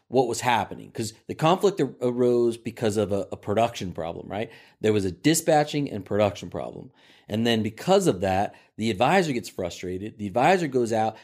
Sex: male